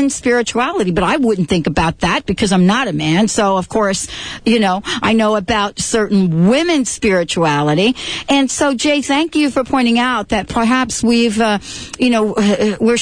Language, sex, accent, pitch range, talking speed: English, female, American, 190-245 Hz, 175 wpm